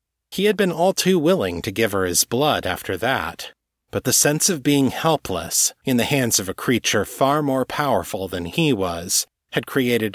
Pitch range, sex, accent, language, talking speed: 90-130 Hz, male, American, English, 195 wpm